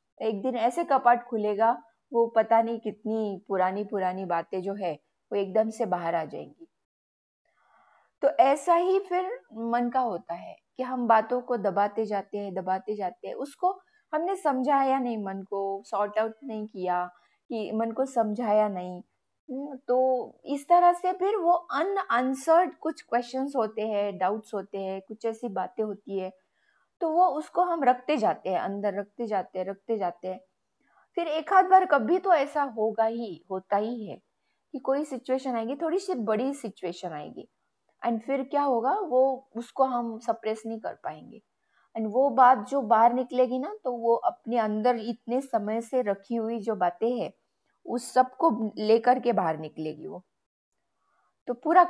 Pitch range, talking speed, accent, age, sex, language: 210-265 Hz, 170 wpm, native, 20-39, female, Hindi